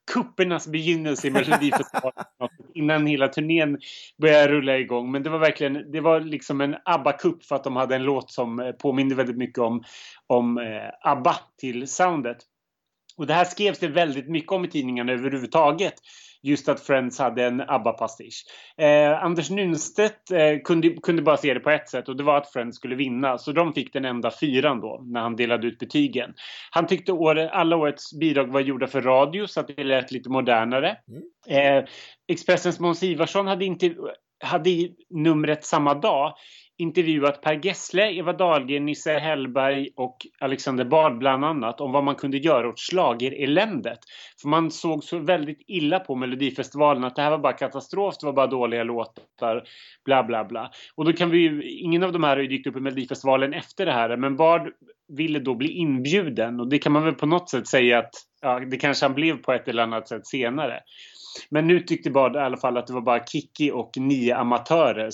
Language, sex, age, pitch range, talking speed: Swedish, male, 30-49, 130-160 Hz, 190 wpm